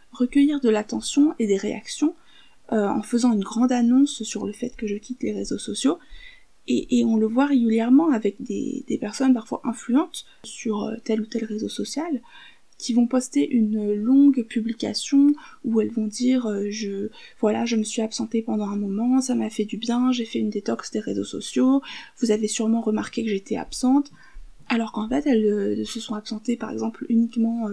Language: French